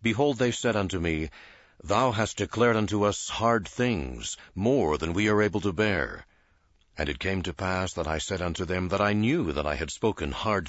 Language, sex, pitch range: English, male, 90-115 Hz